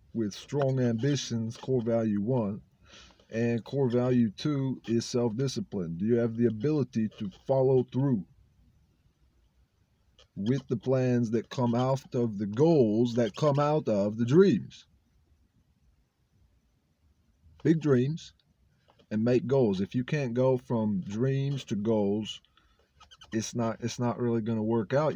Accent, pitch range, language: American, 110-135 Hz, English